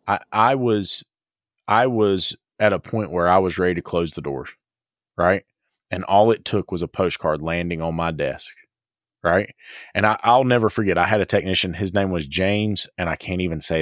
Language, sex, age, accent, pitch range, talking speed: English, male, 30-49, American, 90-105 Hz, 205 wpm